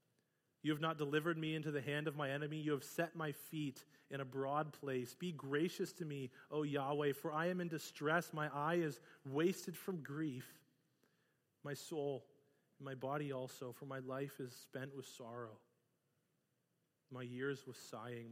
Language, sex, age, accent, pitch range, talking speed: English, male, 30-49, American, 125-150 Hz, 175 wpm